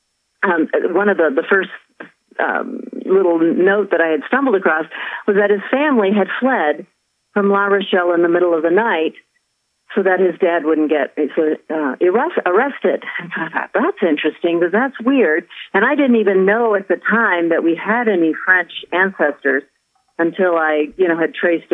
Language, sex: English, female